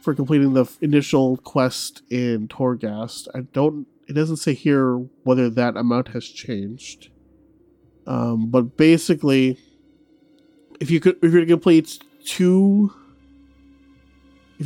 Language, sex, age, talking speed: English, male, 30-49, 125 wpm